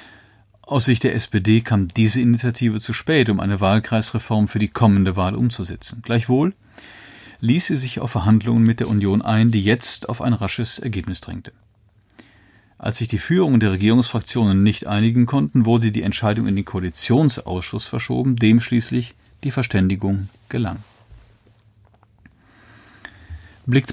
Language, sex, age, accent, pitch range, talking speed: German, male, 40-59, German, 105-125 Hz, 140 wpm